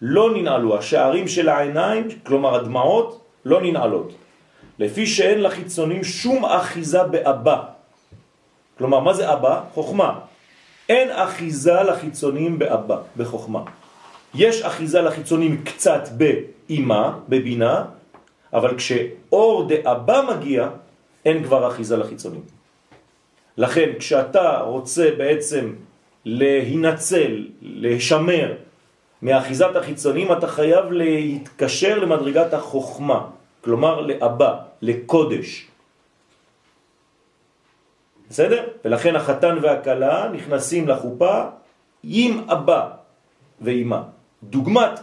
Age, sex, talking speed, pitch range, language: 40-59, male, 85 wpm, 135-175 Hz, French